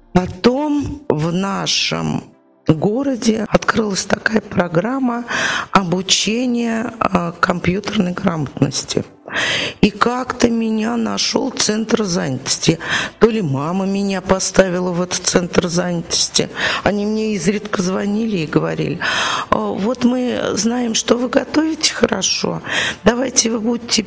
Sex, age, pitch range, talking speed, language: female, 50-69, 190-245 Hz, 100 wpm, Russian